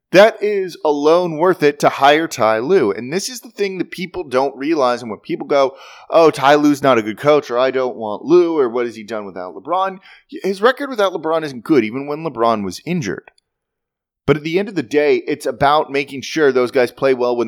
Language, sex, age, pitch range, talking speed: English, male, 30-49, 130-195 Hz, 235 wpm